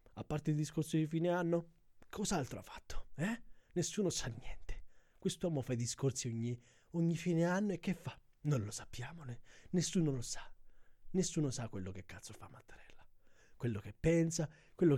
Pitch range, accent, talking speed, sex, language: 105-155 Hz, native, 170 wpm, male, Italian